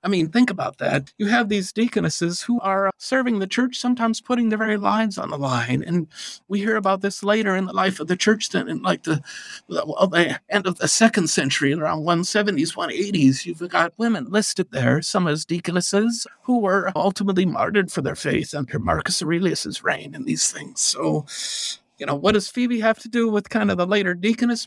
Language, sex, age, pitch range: English, male, 50-69, 170-215 Hz